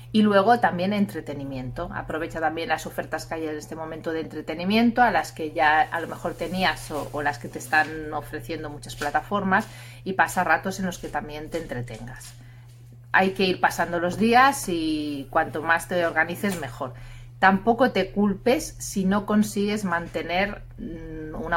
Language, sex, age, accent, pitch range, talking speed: Spanish, female, 30-49, Spanish, 150-190 Hz, 170 wpm